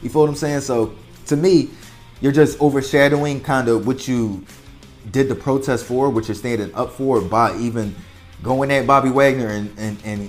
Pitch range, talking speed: 110-140 Hz, 185 wpm